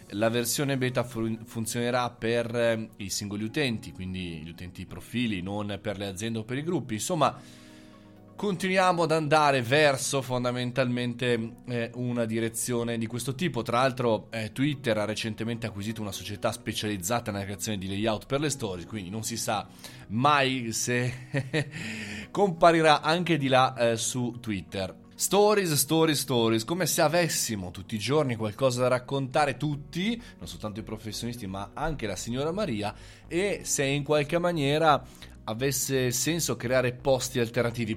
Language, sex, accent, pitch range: Italian, male, native, 110-140 Hz